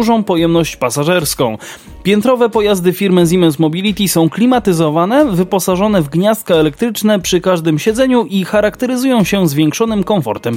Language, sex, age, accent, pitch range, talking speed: Polish, male, 20-39, native, 165-215 Hz, 125 wpm